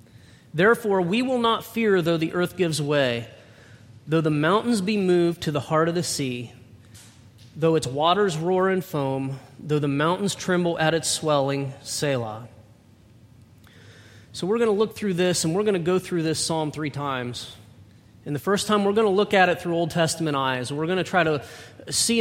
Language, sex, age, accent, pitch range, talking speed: English, male, 30-49, American, 130-180 Hz, 195 wpm